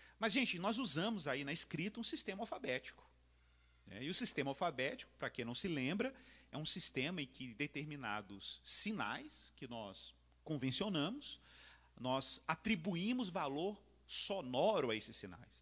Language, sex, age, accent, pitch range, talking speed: Portuguese, male, 40-59, Brazilian, 125-200 Hz, 140 wpm